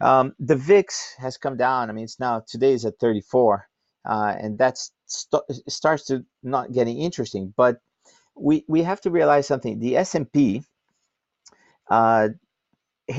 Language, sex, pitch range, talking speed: English, male, 110-135 Hz, 150 wpm